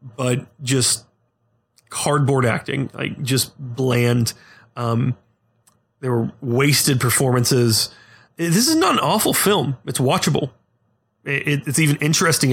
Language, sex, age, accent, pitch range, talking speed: English, male, 30-49, American, 120-145 Hz, 110 wpm